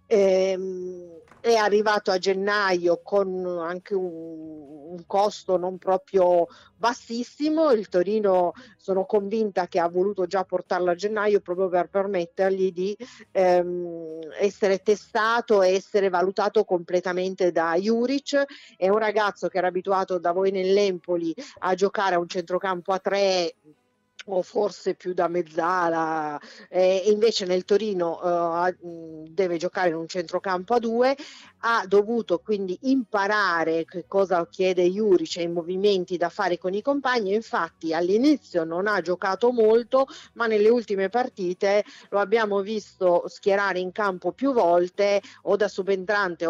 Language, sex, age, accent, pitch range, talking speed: Italian, female, 50-69, native, 175-210 Hz, 140 wpm